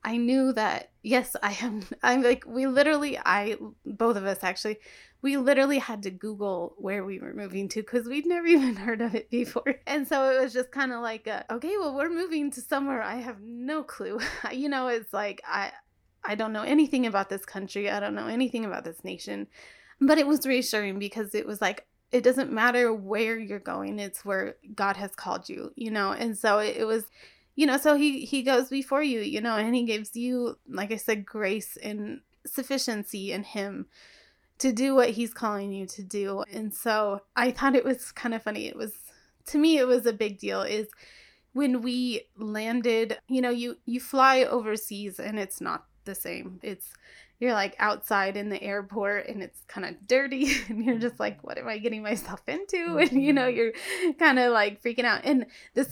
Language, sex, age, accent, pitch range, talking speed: English, female, 20-39, American, 210-270 Hz, 205 wpm